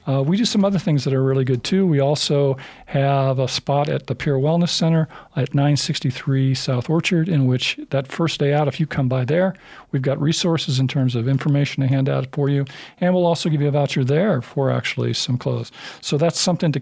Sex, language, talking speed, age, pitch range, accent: male, English, 230 wpm, 40-59, 135-160 Hz, American